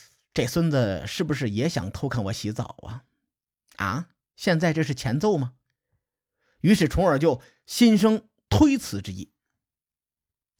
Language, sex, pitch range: Chinese, male, 120-185 Hz